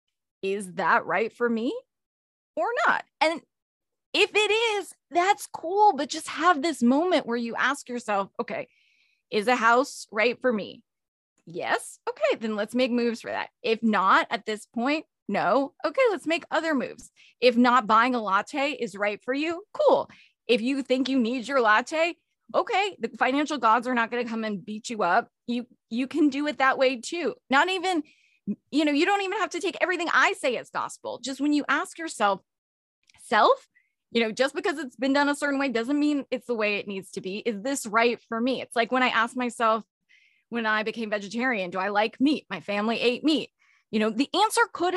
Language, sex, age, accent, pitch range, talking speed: English, female, 20-39, American, 230-320 Hz, 205 wpm